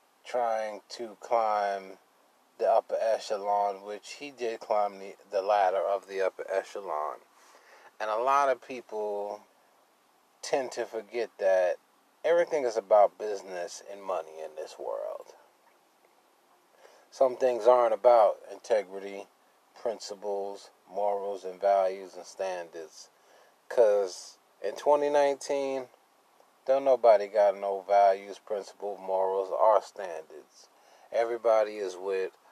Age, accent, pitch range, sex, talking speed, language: 30-49, American, 100-140 Hz, male, 115 wpm, English